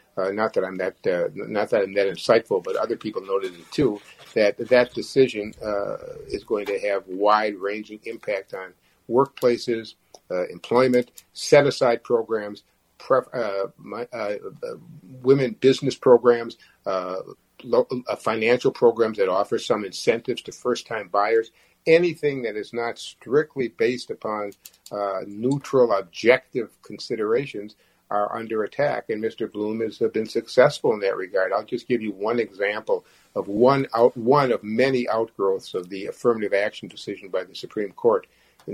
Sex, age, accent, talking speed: male, 50-69, American, 160 wpm